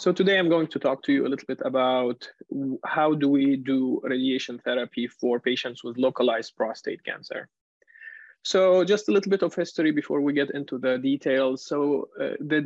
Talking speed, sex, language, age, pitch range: 190 wpm, male, English, 20-39, 130-155 Hz